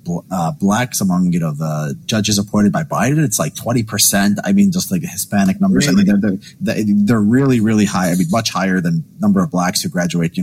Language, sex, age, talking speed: English, male, 30-49, 220 wpm